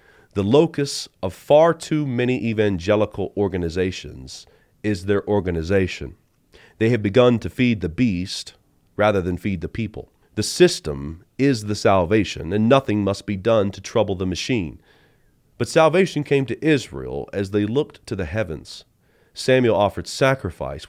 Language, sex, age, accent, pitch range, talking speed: English, male, 40-59, American, 90-120 Hz, 145 wpm